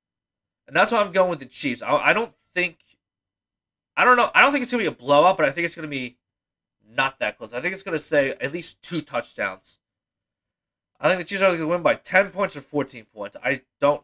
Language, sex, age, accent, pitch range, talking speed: English, male, 30-49, American, 110-160 Hz, 235 wpm